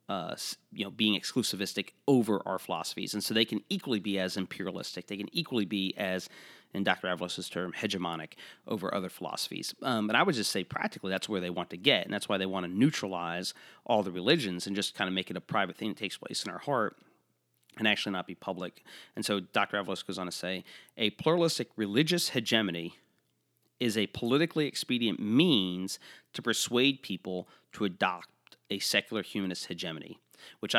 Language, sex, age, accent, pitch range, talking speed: English, male, 30-49, American, 95-120 Hz, 195 wpm